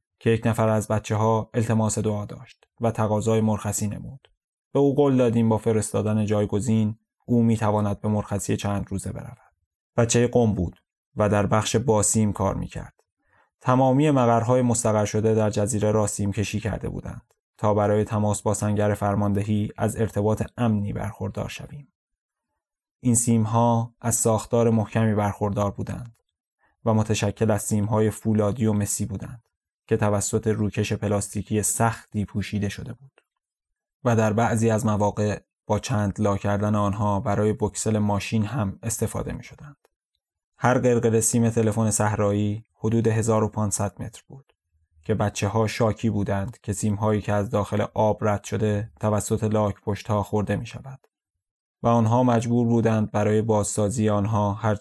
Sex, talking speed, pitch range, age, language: male, 150 wpm, 105-115 Hz, 20-39, Persian